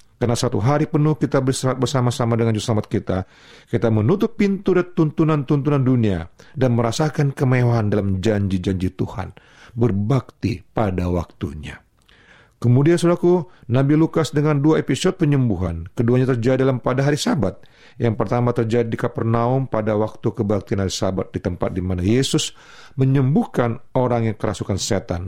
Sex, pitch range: male, 110-155 Hz